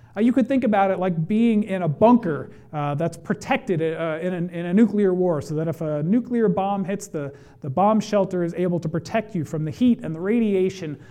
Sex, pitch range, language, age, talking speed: male, 160-210 Hz, English, 40-59, 220 wpm